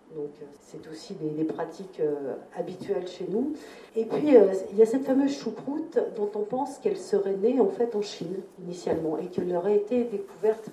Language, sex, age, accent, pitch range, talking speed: French, female, 50-69, French, 160-225 Hz, 195 wpm